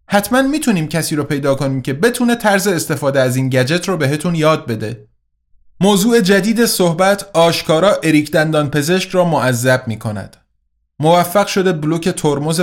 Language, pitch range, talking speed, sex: Persian, 130-175 Hz, 145 wpm, male